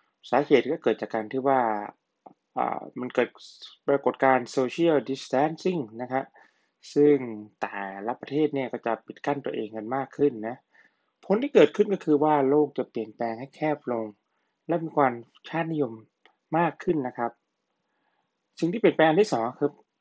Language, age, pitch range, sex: Thai, 20-39, 120-145 Hz, male